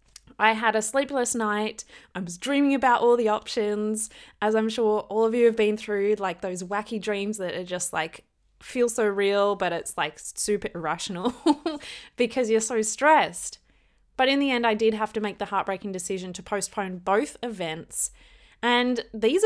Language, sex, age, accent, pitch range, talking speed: English, female, 20-39, Australian, 195-245 Hz, 180 wpm